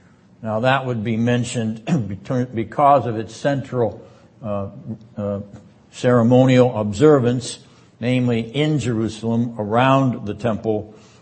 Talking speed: 100 wpm